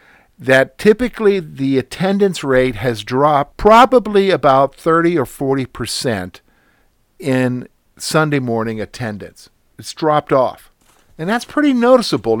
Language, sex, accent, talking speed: English, male, American, 115 wpm